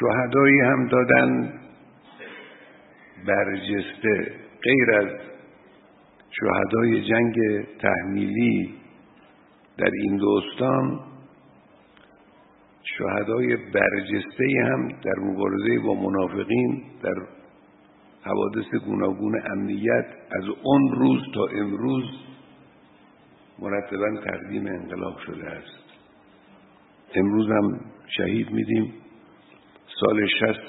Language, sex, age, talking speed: Persian, male, 50-69, 75 wpm